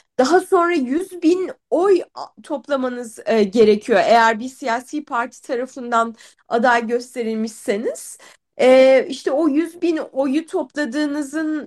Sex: female